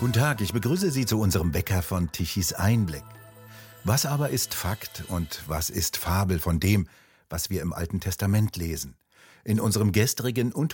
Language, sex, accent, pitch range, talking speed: German, male, German, 85-110 Hz, 175 wpm